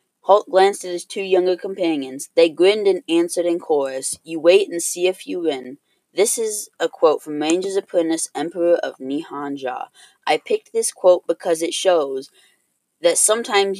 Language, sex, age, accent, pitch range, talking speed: English, female, 20-39, American, 160-220 Hz, 170 wpm